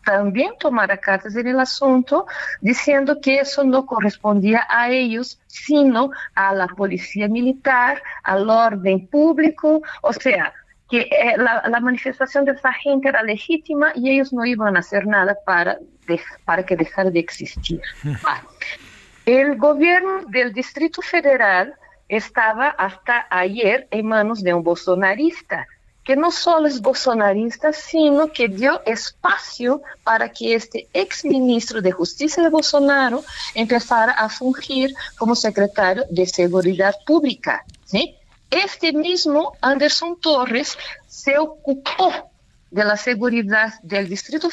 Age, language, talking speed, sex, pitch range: 50-69, Spanish, 130 wpm, female, 215-295 Hz